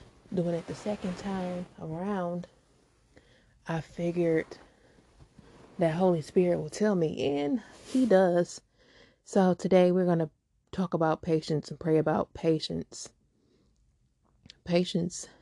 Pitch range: 160-185 Hz